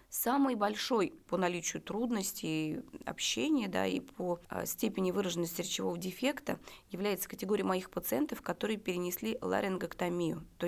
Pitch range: 180-230 Hz